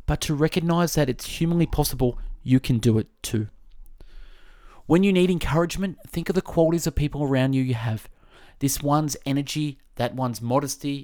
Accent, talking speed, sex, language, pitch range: Australian, 175 wpm, male, English, 115-145 Hz